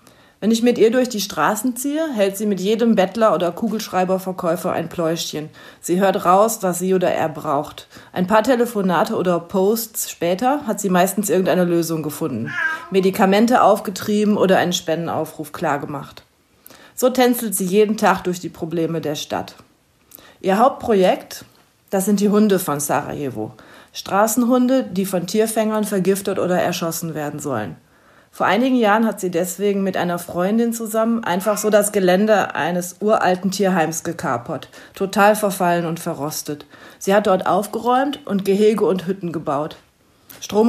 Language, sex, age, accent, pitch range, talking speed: German, female, 40-59, German, 170-215 Hz, 150 wpm